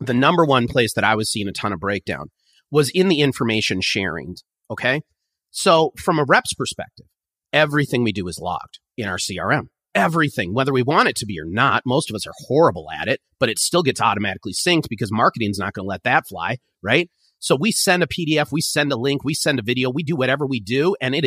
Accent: American